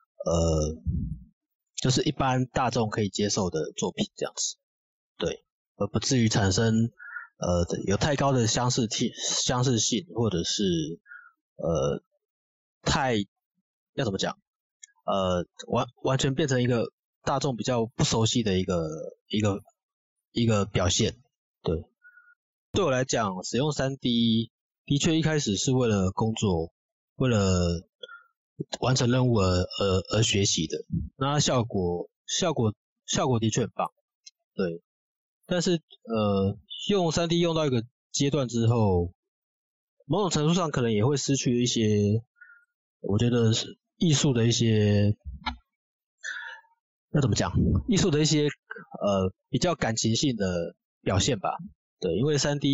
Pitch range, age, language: 105-165 Hz, 20-39, Chinese